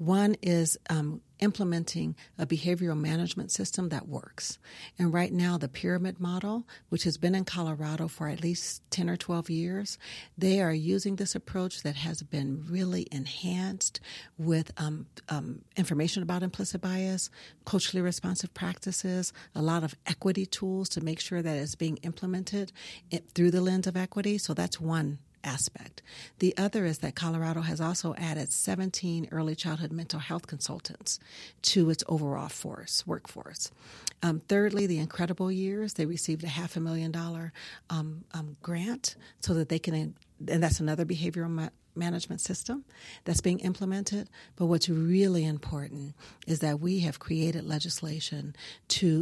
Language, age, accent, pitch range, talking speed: English, 40-59, American, 160-185 Hz, 155 wpm